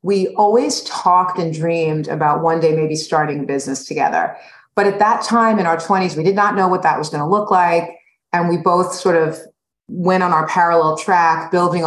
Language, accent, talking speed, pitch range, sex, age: English, American, 210 wpm, 155-190 Hz, female, 30-49